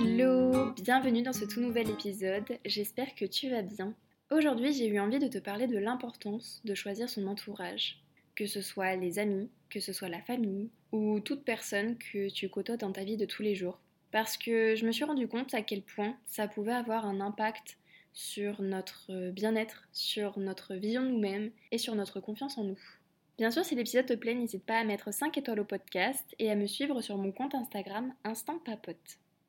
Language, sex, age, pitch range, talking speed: French, female, 20-39, 200-240 Hz, 205 wpm